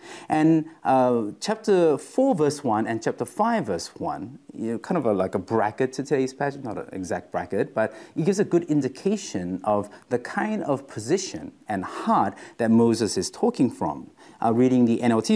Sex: male